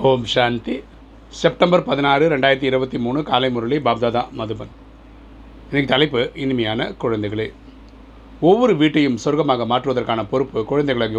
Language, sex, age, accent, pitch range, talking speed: Tamil, male, 40-59, native, 110-135 Hz, 115 wpm